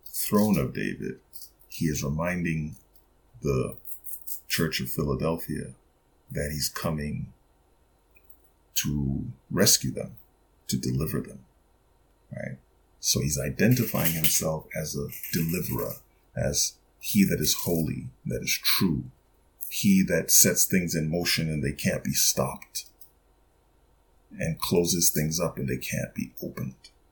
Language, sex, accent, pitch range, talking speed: English, male, American, 75-85 Hz, 120 wpm